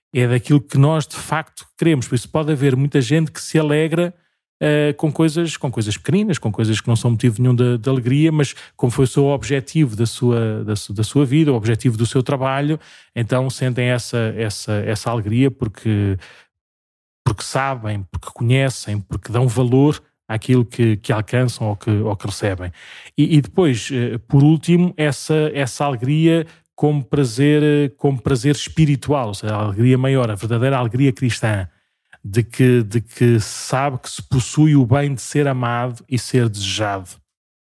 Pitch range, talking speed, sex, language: 115-145 Hz, 165 wpm, male, Portuguese